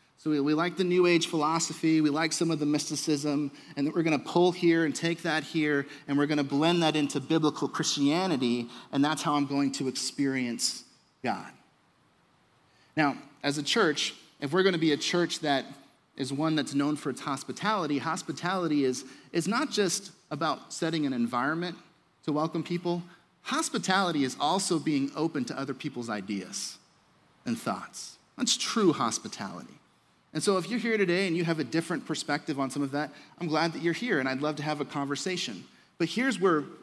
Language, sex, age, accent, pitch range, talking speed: English, male, 30-49, American, 145-170 Hz, 185 wpm